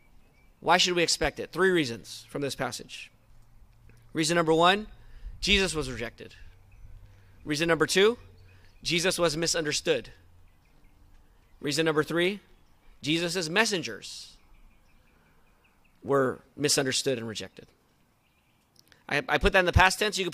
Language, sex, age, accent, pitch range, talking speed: English, male, 30-49, American, 140-190 Hz, 120 wpm